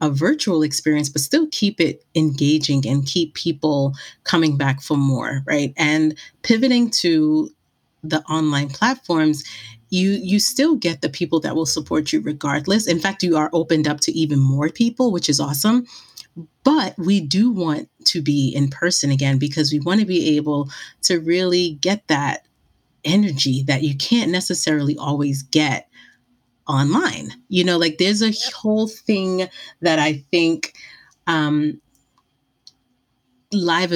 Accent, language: American, English